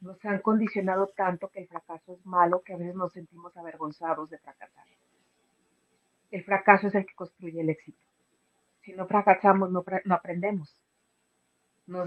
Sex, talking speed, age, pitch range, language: female, 160 wpm, 40-59, 155-200 Hz, Spanish